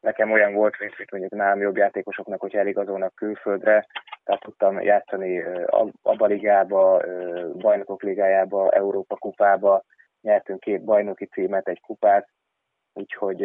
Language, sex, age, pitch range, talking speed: Hungarian, male, 20-39, 100-105 Hz, 130 wpm